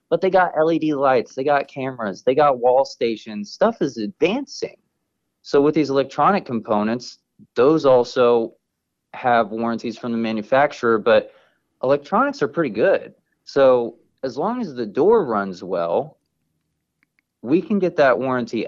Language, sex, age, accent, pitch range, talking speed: English, male, 30-49, American, 115-160 Hz, 145 wpm